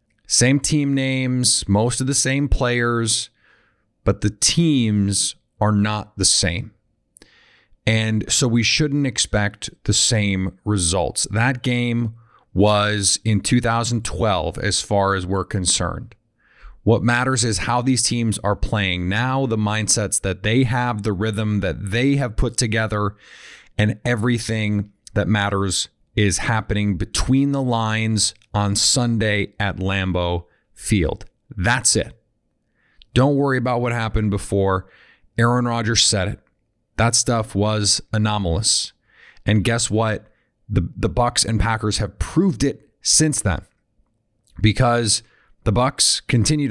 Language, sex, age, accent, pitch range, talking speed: English, male, 40-59, American, 100-120 Hz, 130 wpm